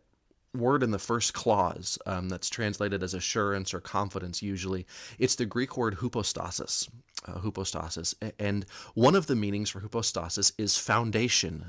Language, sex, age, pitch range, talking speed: English, male, 30-49, 95-115 Hz, 150 wpm